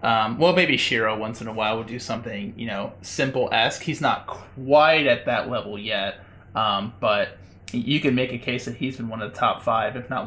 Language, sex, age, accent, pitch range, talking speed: English, male, 30-49, American, 115-145 Hz, 220 wpm